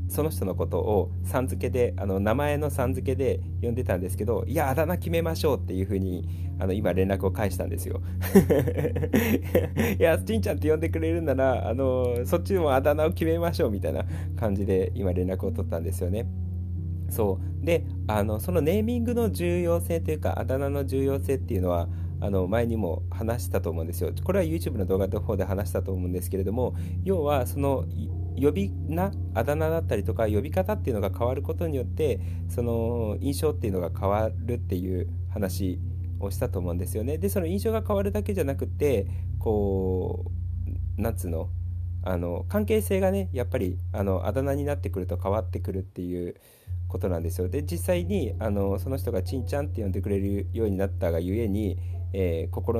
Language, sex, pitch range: Japanese, male, 90-95 Hz